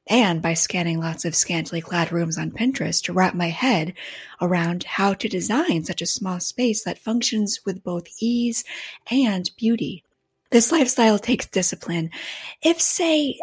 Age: 30-49